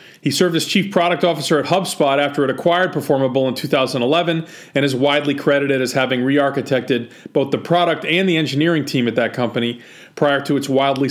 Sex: male